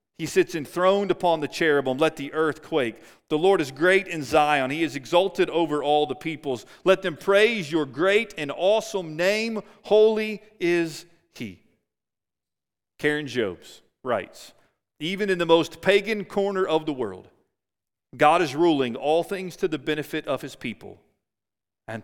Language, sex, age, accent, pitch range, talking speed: English, male, 40-59, American, 135-190 Hz, 160 wpm